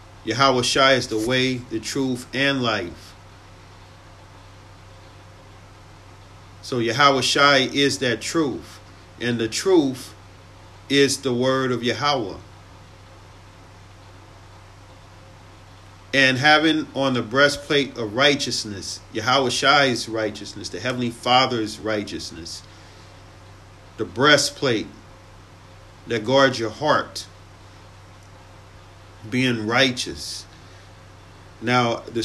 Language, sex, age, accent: English, male, 40-59, American